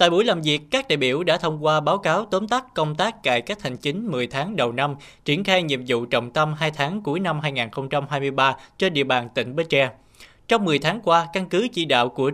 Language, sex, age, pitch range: Vietnamese, male, 20-39, 130-170 Hz